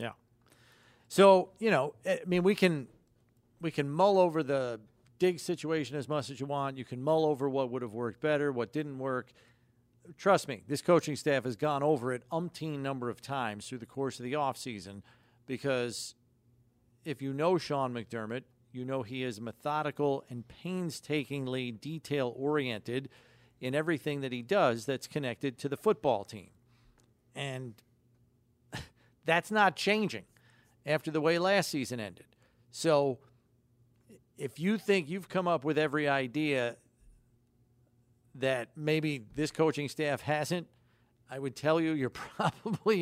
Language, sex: English, male